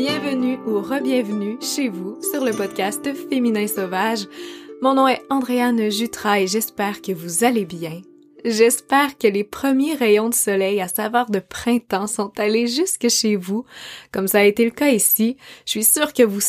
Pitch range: 195-240 Hz